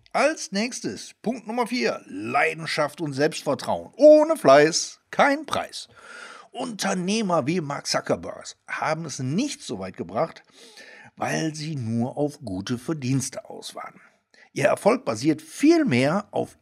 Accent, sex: German, male